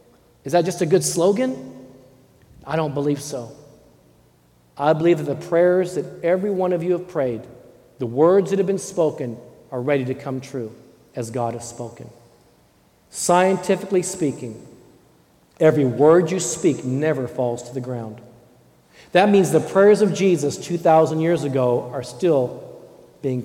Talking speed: 155 wpm